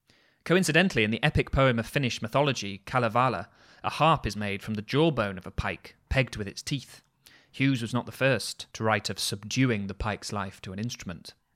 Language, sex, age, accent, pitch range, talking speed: English, male, 20-39, British, 105-130 Hz, 195 wpm